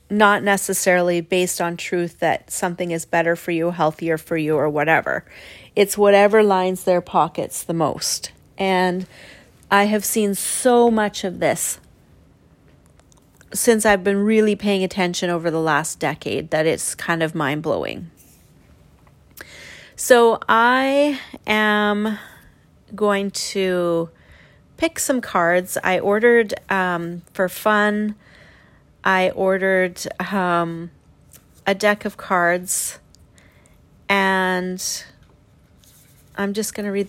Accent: American